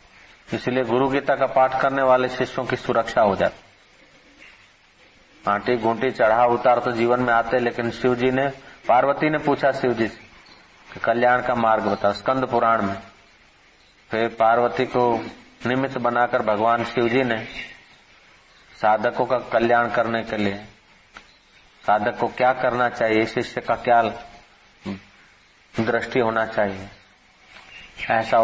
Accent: native